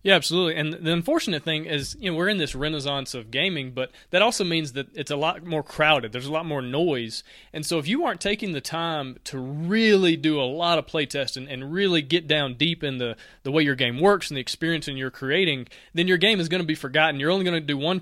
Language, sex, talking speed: English, male, 255 wpm